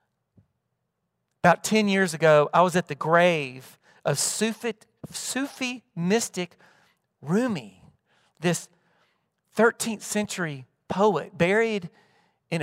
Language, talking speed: English, 90 wpm